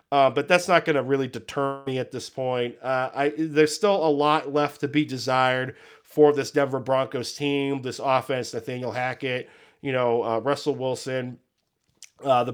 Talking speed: 175 wpm